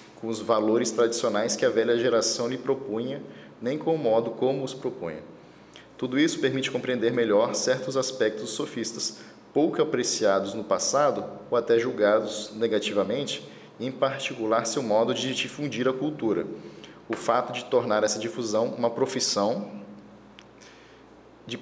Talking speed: 140 wpm